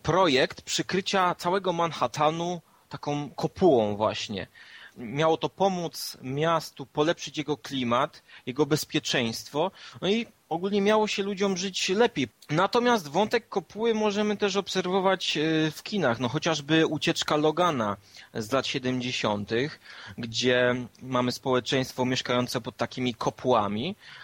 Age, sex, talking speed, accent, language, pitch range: 30-49, male, 115 wpm, native, Polish, 130-175 Hz